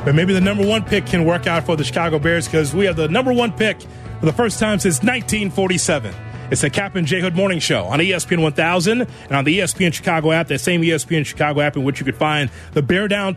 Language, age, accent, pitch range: English, 30-49, American, 135-180 Hz